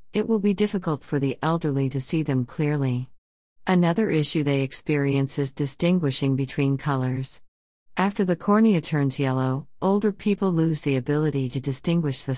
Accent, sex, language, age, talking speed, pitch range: American, female, English, 50-69, 155 wpm, 135-165 Hz